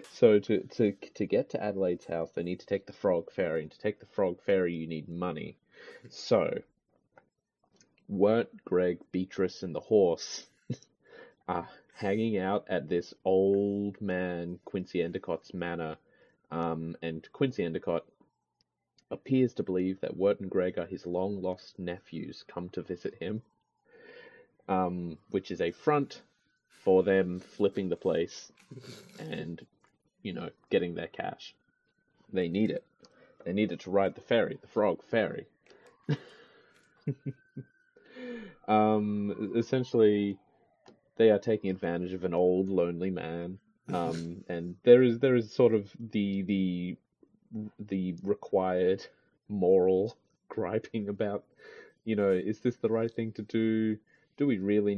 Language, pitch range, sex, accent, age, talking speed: English, 90-110 Hz, male, Australian, 30-49, 140 wpm